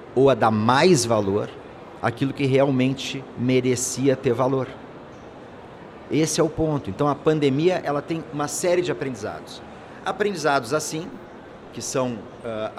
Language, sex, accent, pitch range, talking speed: Portuguese, male, Brazilian, 130-160 Hz, 135 wpm